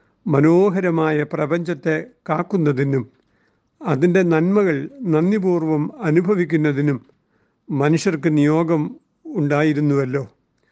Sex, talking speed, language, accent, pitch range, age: male, 55 wpm, Malayalam, native, 150-185 Hz, 60-79